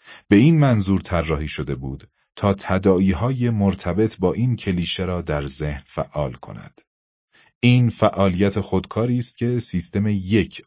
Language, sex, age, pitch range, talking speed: Persian, male, 30-49, 80-110 Hz, 135 wpm